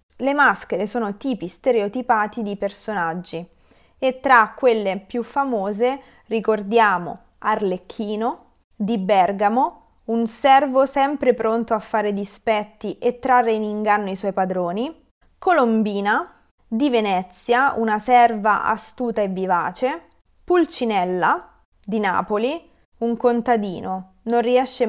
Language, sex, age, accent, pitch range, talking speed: Italian, female, 20-39, native, 205-260 Hz, 110 wpm